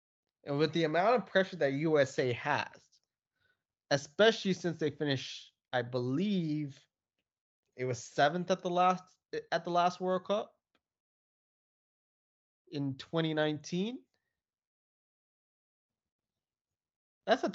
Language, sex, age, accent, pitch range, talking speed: English, male, 20-39, American, 130-175 Hz, 95 wpm